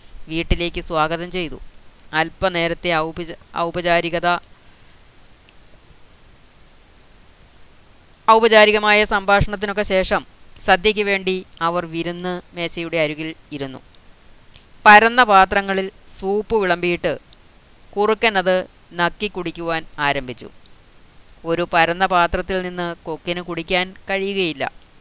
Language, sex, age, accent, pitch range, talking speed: Malayalam, female, 20-39, native, 160-185 Hz, 75 wpm